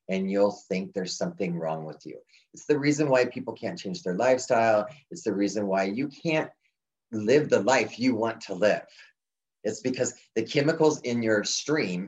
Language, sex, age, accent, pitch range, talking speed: English, male, 30-49, American, 95-110 Hz, 185 wpm